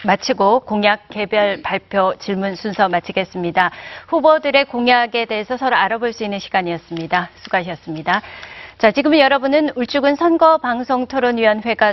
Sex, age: female, 40-59